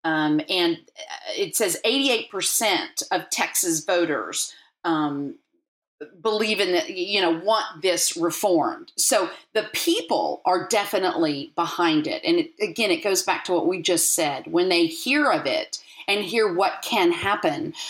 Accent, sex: American, female